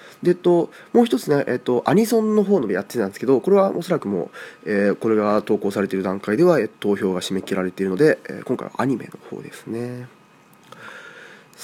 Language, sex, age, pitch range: Japanese, male, 20-39, 105-160 Hz